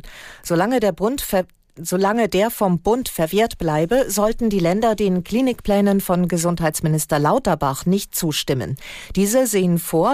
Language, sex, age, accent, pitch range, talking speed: German, female, 40-59, German, 165-200 Hz, 135 wpm